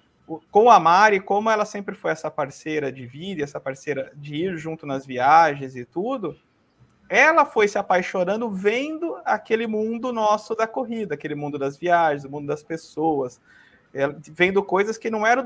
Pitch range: 140-210 Hz